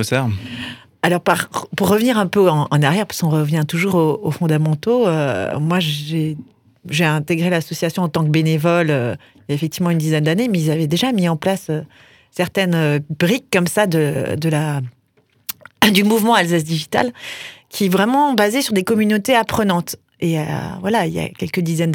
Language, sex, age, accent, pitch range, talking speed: French, female, 30-49, French, 160-210 Hz, 180 wpm